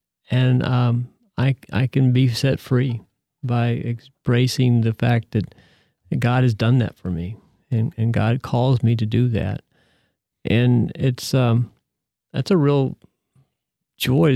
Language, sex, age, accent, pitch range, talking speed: English, male, 50-69, American, 115-135 Hz, 140 wpm